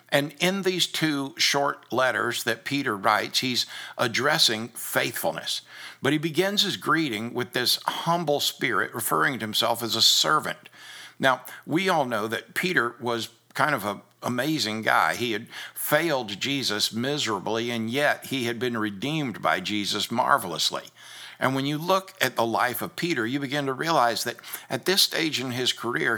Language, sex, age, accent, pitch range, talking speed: English, male, 60-79, American, 115-150 Hz, 165 wpm